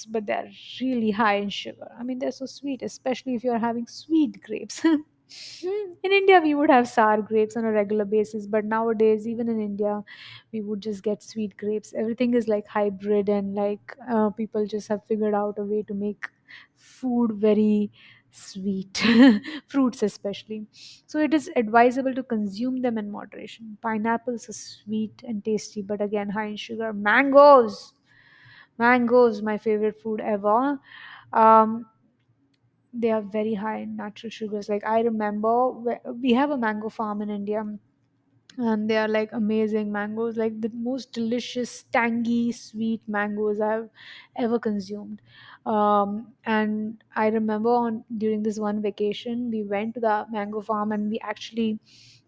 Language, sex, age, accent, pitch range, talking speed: English, female, 20-39, Indian, 210-235 Hz, 155 wpm